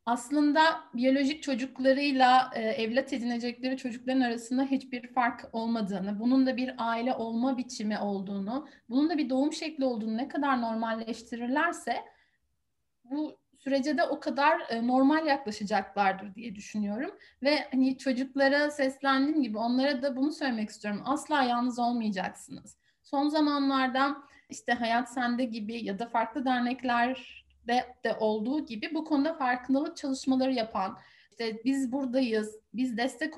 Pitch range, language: 235-285 Hz, Turkish